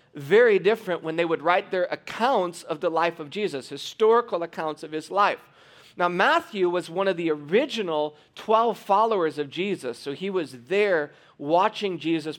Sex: male